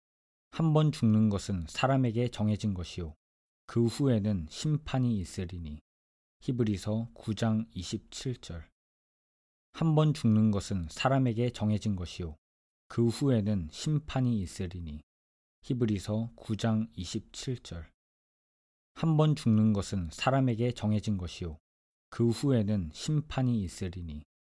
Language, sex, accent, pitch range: Korean, male, native, 85-120 Hz